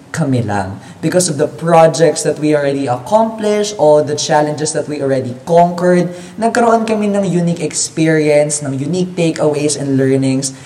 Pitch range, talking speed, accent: 150-205 Hz, 140 wpm, native